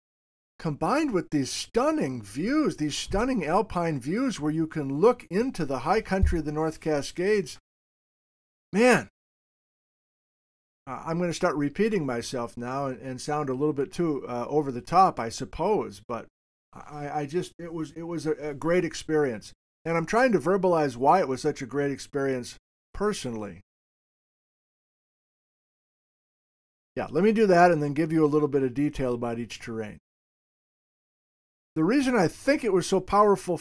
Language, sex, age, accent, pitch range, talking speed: English, male, 50-69, American, 130-180 Hz, 165 wpm